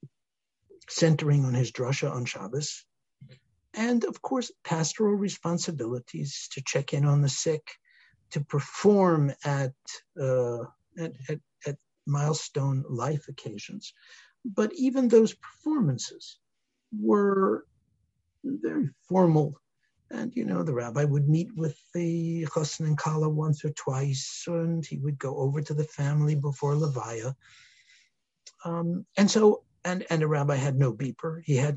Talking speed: 130 wpm